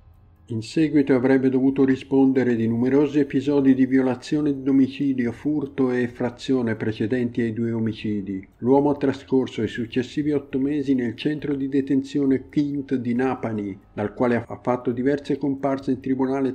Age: 50-69